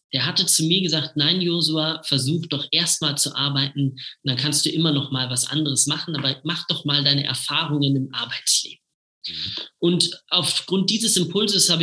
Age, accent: 20-39, German